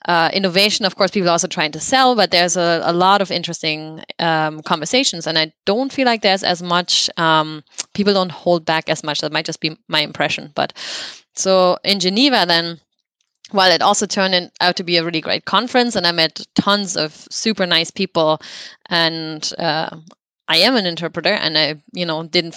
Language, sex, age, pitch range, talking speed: English, female, 20-39, 160-185 Hz, 200 wpm